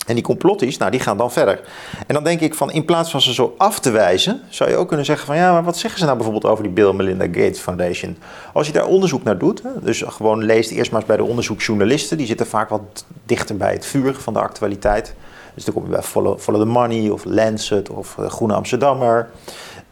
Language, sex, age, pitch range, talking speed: Dutch, male, 40-59, 115-160 Hz, 240 wpm